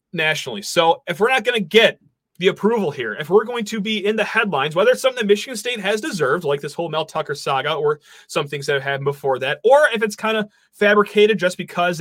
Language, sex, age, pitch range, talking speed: English, male, 30-49, 145-205 Hz, 245 wpm